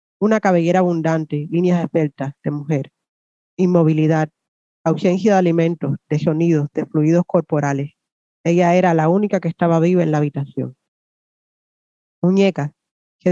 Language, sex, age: Spanish, female, 20-39